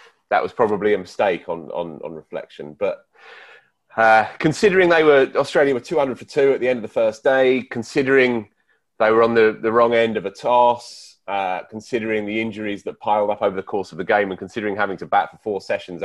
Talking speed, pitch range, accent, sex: 220 wpm, 105-160 Hz, British, male